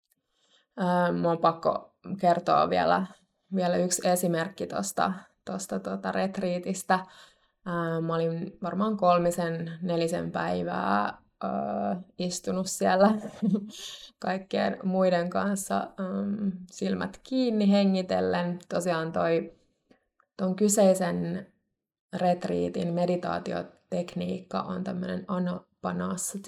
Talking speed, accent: 75 wpm, native